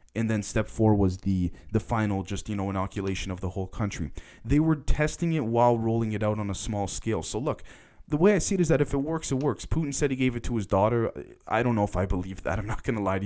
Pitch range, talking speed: 100-130 Hz, 285 wpm